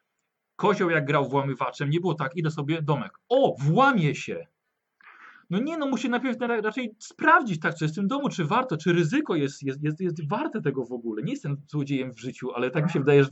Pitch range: 140-190 Hz